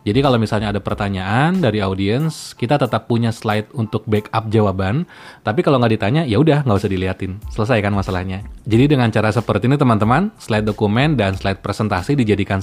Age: 20-39